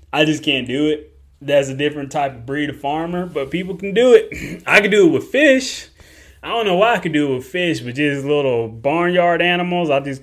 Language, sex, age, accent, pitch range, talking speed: English, male, 20-39, American, 130-155 Hz, 240 wpm